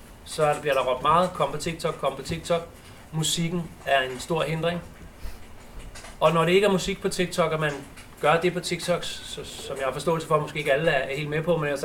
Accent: native